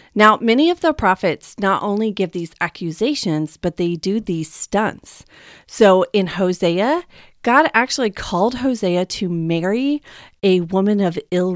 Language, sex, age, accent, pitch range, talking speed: English, female, 30-49, American, 180-230 Hz, 145 wpm